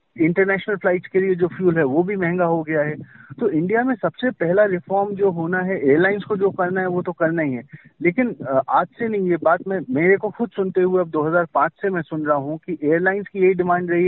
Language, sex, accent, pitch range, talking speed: Hindi, male, native, 145-190 Hz, 245 wpm